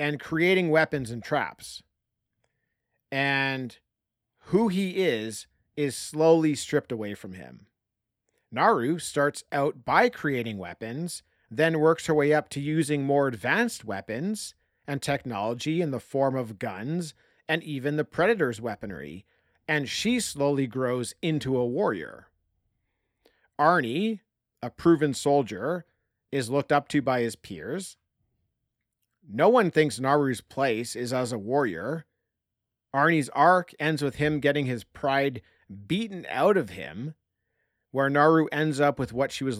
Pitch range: 115-150 Hz